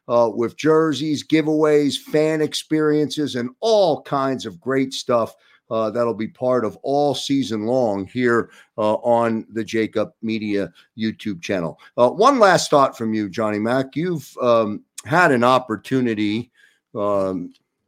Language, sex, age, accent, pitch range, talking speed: English, male, 50-69, American, 115-145 Hz, 140 wpm